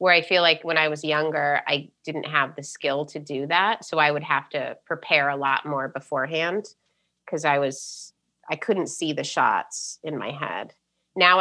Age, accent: 30-49, American